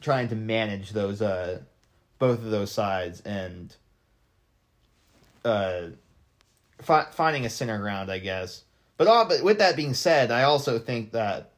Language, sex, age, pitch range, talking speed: English, male, 20-39, 105-130 Hz, 150 wpm